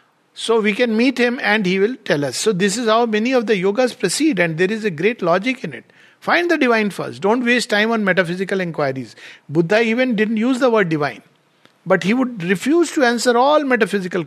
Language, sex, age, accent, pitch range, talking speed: English, male, 50-69, Indian, 170-220 Hz, 220 wpm